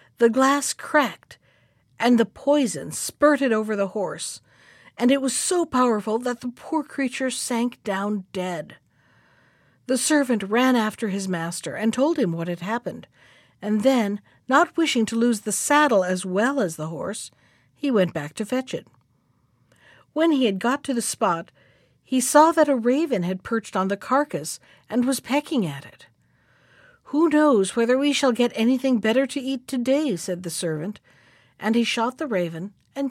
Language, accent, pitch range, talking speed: English, American, 190-265 Hz, 170 wpm